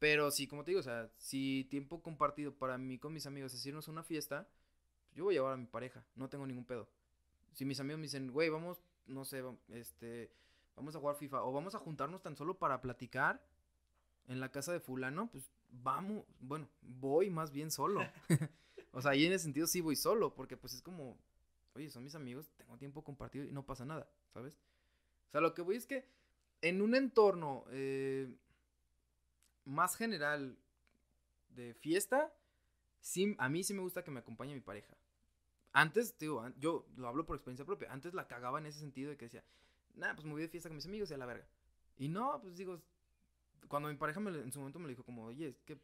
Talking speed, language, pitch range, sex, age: 220 wpm, Spanish, 120-155 Hz, male, 20-39